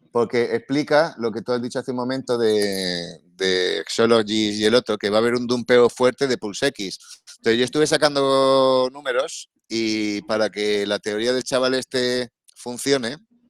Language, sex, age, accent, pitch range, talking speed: Spanish, male, 30-49, Spanish, 110-135 Hz, 175 wpm